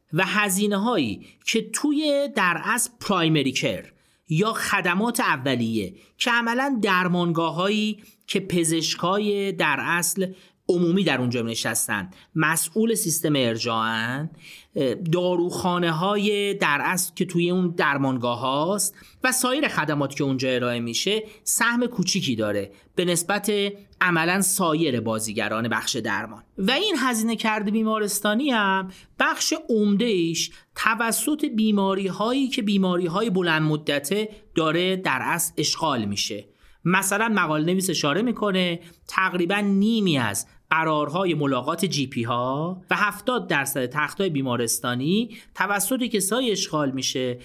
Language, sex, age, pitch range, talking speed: Persian, male, 40-59, 150-210 Hz, 120 wpm